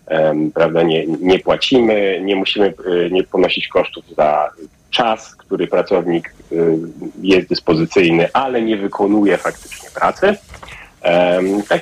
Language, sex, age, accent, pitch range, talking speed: Polish, male, 30-49, native, 90-115 Hz, 105 wpm